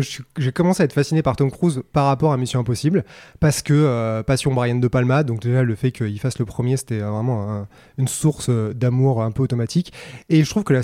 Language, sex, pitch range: French, male, 125-155 Hz